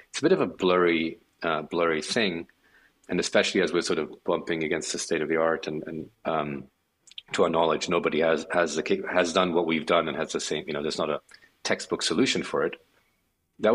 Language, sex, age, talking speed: English, male, 40-59, 220 wpm